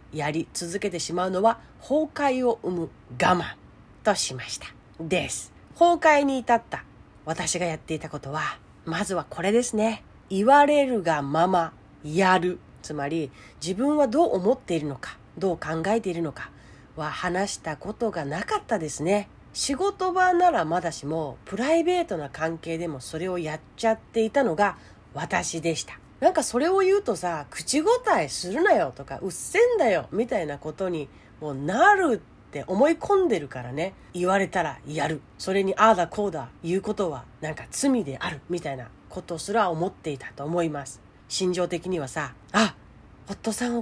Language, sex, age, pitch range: Japanese, female, 40-59, 155-230 Hz